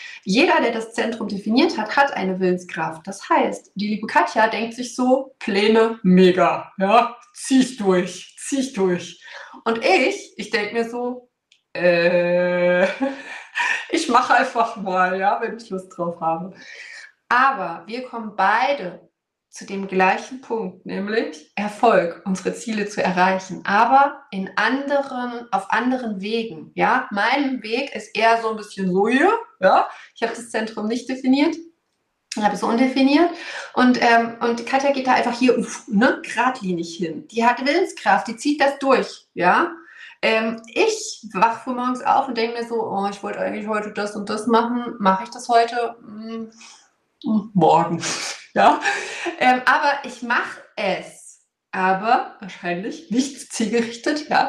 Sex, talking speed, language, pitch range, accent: female, 150 wpm, German, 200-260 Hz, German